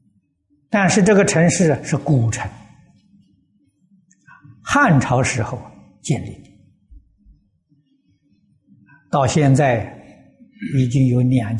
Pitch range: 120-170 Hz